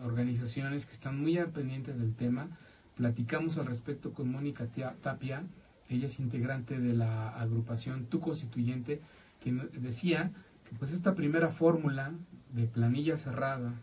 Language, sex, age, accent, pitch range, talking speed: English, male, 40-59, Mexican, 120-150 Hz, 135 wpm